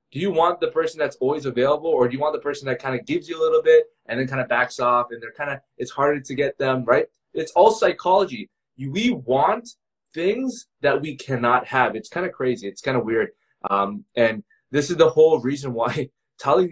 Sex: male